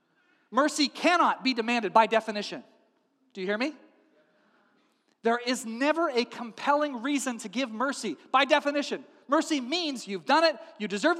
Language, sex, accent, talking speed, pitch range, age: English, male, American, 150 wpm, 230-315 Hz, 40-59